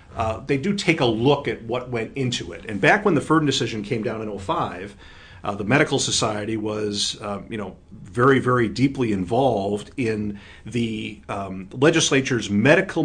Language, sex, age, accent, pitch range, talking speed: English, male, 50-69, American, 100-125 Hz, 175 wpm